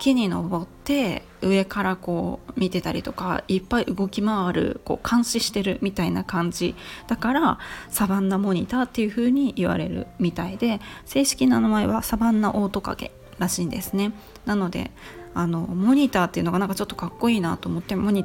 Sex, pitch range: female, 185-230 Hz